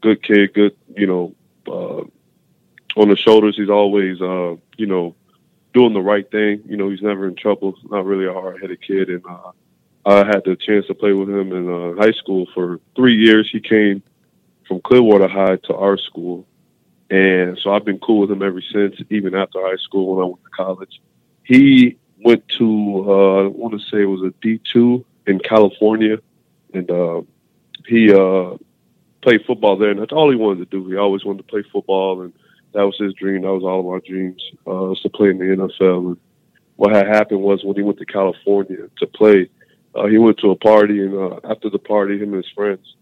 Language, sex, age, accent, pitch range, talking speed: English, male, 20-39, American, 95-105 Hz, 210 wpm